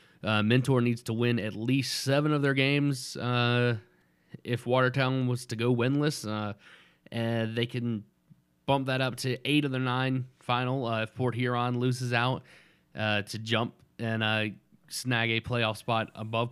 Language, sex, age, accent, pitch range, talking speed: English, male, 30-49, American, 110-130 Hz, 170 wpm